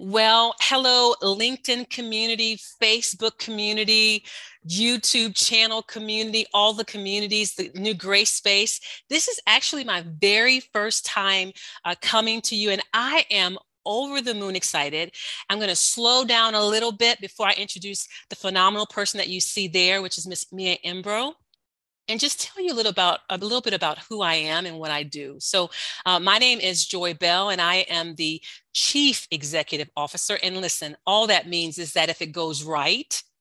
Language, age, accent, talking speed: English, 40-59, American, 180 wpm